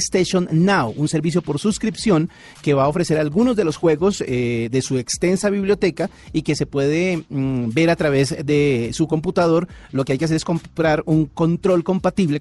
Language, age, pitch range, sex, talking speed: Spanish, 40-59, 135-180 Hz, male, 195 wpm